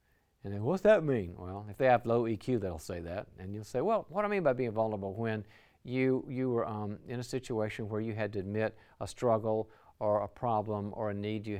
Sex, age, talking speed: male, 50-69, 245 wpm